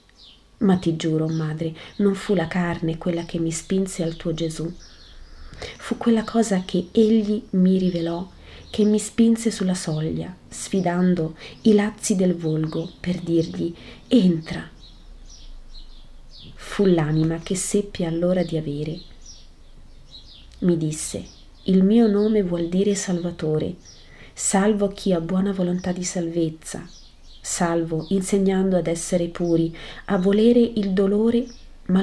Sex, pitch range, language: female, 160-195 Hz, Italian